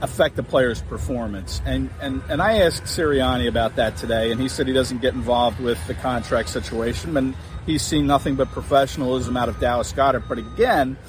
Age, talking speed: 50-69, 195 wpm